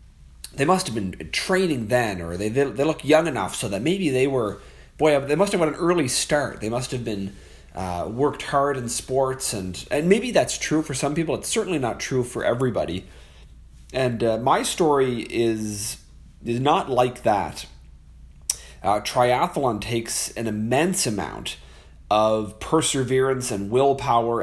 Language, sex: English, male